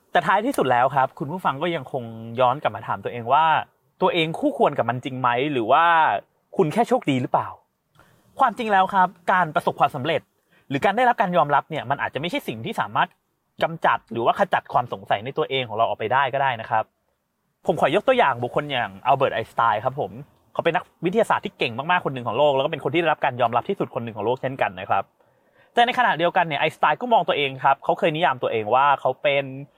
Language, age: English, 30-49